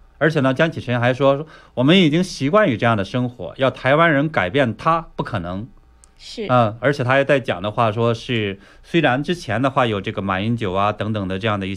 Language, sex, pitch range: Chinese, male, 105-140 Hz